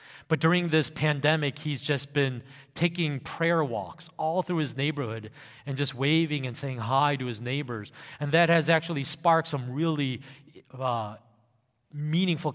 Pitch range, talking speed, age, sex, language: 130-155 Hz, 155 wpm, 30-49, male, English